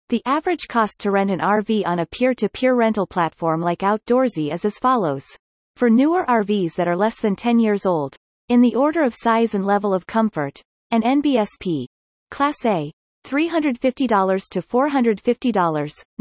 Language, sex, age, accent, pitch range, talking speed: English, female, 30-49, American, 185-255 Hz, 160 wpm